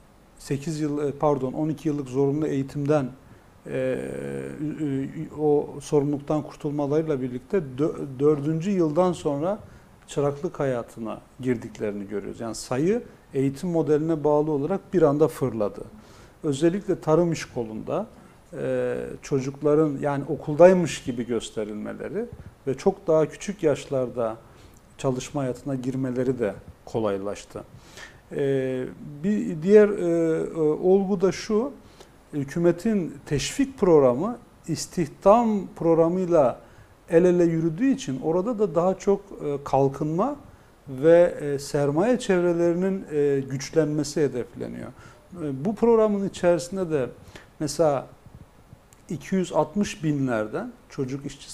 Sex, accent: male, native